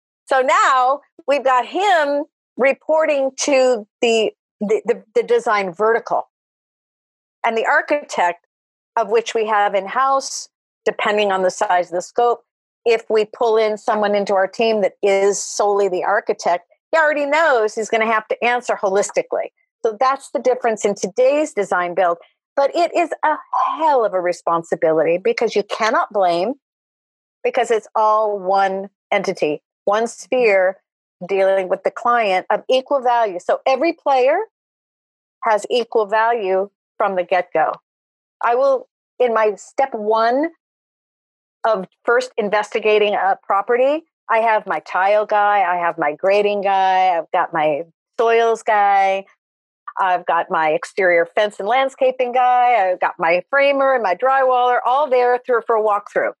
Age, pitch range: 50-69, 195-265 Hz